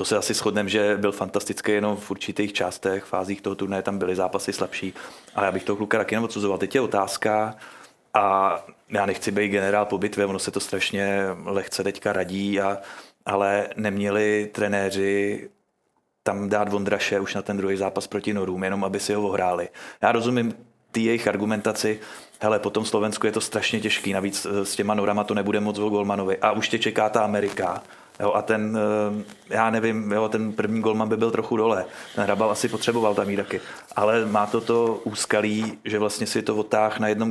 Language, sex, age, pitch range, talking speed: Czech, male, 30-49, 100-105 Hz, 195 wpm